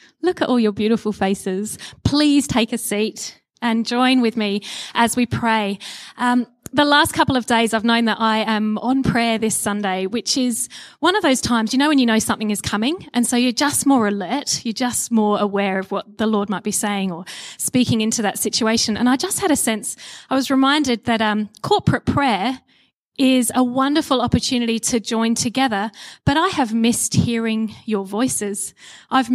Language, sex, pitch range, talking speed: English, female, 215-260 Hz, 195 wpm